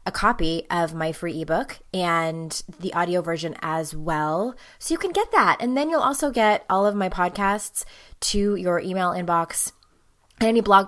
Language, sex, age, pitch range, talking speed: English, female, 20-39, 180-275 Hz, 180 wpm